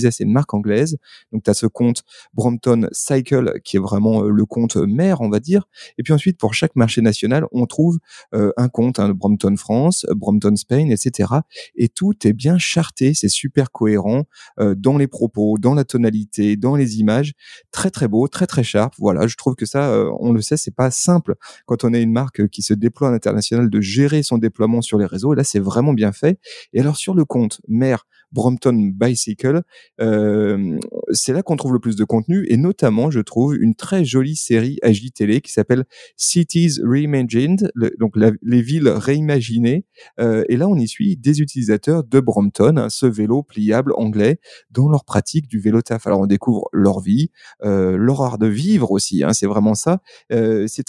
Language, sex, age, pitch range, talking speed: French, male, 30-49, 110-145 Hz, 200 wpm